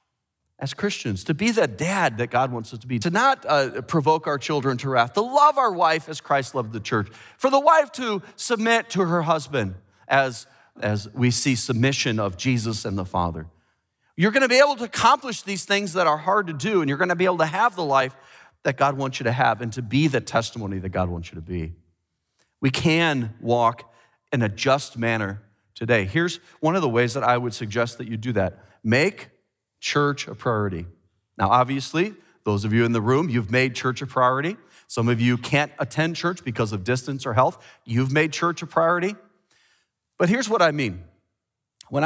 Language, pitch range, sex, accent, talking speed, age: English, 115-175 Hz, male, American, 210 wpm, 40-59